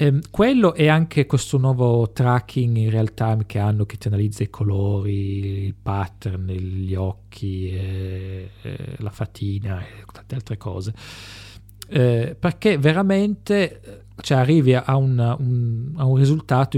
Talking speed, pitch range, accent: 145 wpm, 105-135 Hz, Italian